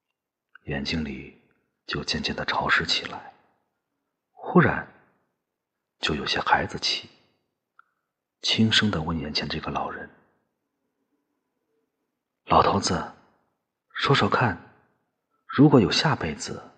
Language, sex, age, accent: Chinese, male, 40-59, native